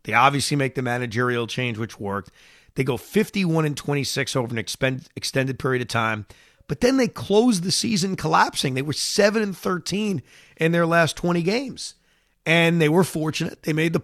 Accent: American